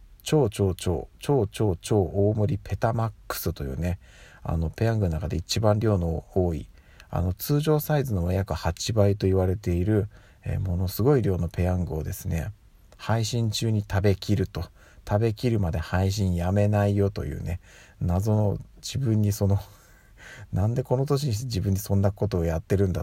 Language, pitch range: Japanese, 90-105 Hz